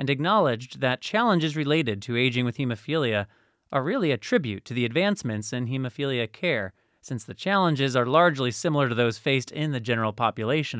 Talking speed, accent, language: 180 wpm, American, English